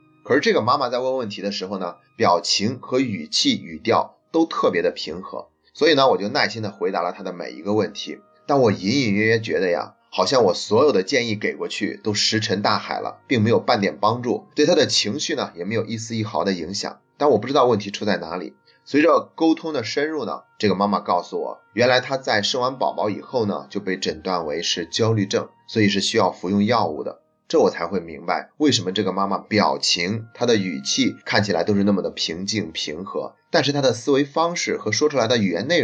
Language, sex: Chinese, male